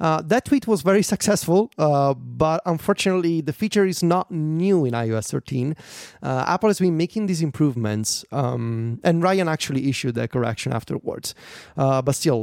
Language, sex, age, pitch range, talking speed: English, male, 30-49, 130-165 Hz, 170 wpm